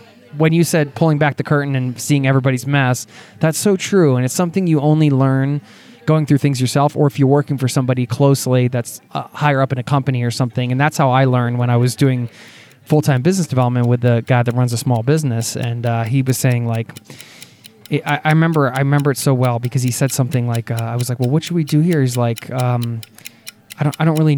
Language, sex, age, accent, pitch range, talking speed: English, male, 20-39, American, 125-150 Hz, 240 wpm